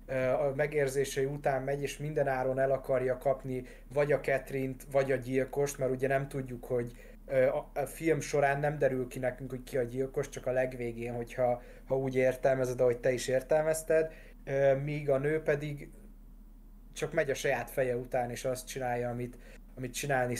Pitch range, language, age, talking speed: 130-145 Hz, Hungarian, 20-39, 175 wpm